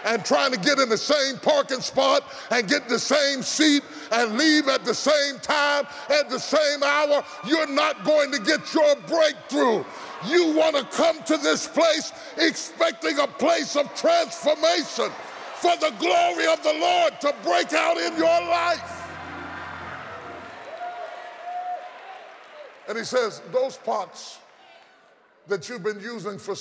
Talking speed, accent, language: 145 wpm, American, English